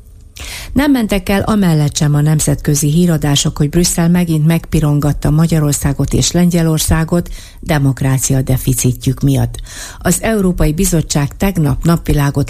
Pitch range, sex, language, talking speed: 130-175 Hz, female, Hungarian, 110 wpm